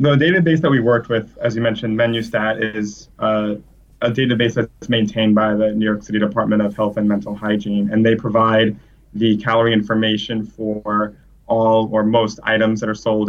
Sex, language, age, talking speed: male, English, 20-39, 190 wpm